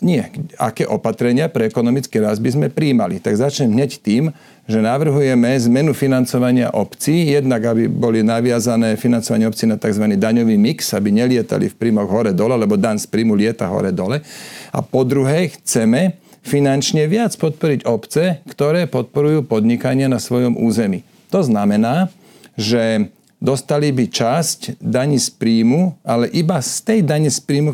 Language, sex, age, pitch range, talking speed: Slovak, male, 40-59, 115-150 Hz, 150 wpm